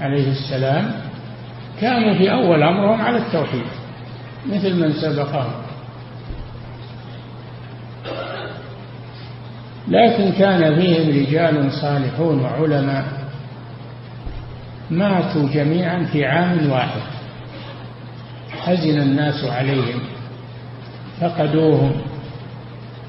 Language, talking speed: Arabic, 70 wpm